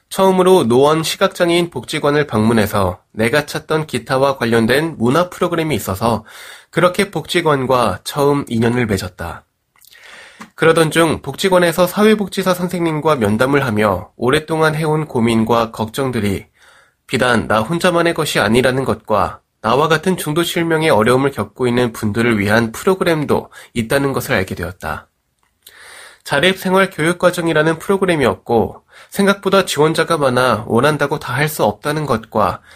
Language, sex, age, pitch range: Korean, male, 20-39, 115-165 Hz